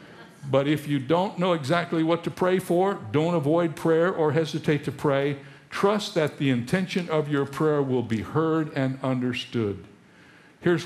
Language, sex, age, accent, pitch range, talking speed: English, male, 60-79, American, 130-195 Hz, 165 wpm